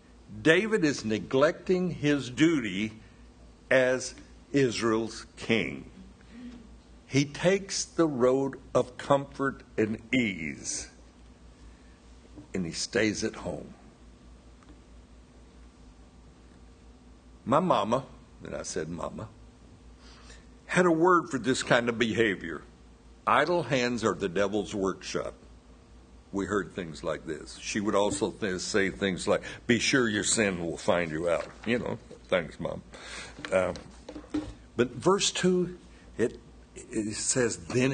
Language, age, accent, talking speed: English, 60-79, American, 110 wpm